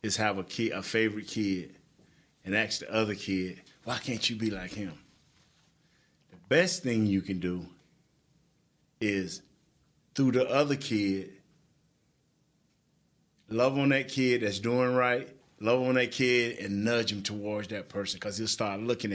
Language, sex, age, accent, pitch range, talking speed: English, male, 30-49, American, 100-130 Hz, 155 wpm